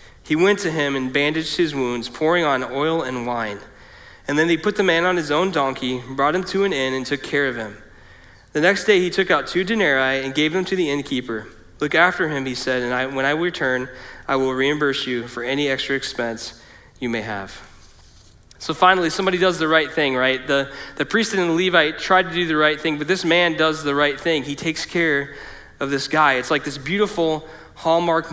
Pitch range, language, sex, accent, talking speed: 130-165 Hz, English, male, American, 220 wpm